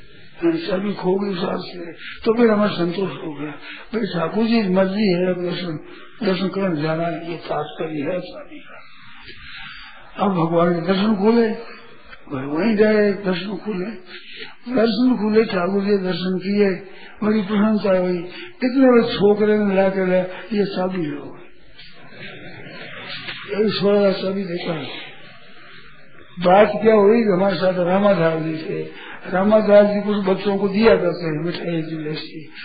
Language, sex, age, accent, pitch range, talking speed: Hindi, male, 50-69, native, 180-215 Hz, 120 wpm